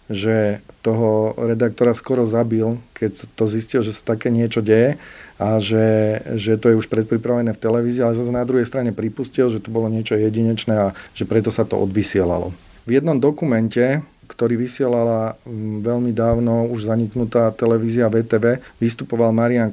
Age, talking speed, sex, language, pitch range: 40-59, 160 wpm, male, Slovak, 110-120 Hz